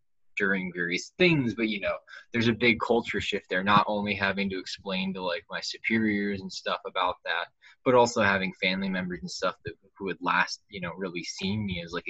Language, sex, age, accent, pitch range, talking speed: English, male, 20-39, American, 95-115 Hz, 215 wpm